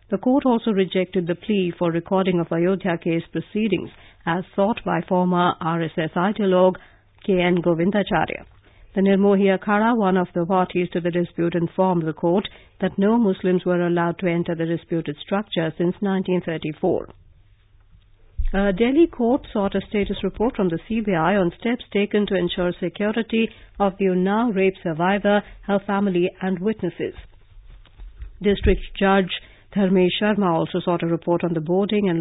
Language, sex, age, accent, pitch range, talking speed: English, female, 50-69, Indian, 165-195 Hz, 155 wpm